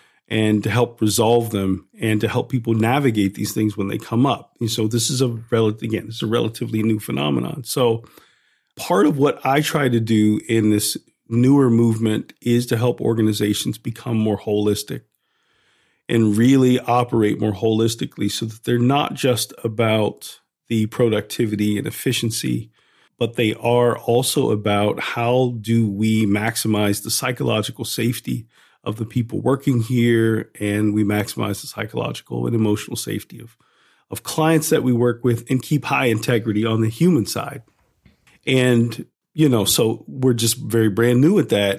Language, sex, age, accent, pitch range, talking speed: English, male, 40-59, American, 105-125 Hz, 165 wpm